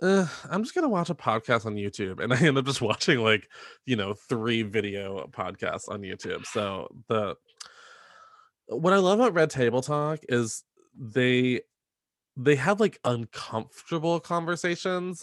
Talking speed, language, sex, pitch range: 155 wpm, English, male, 115-180 Hz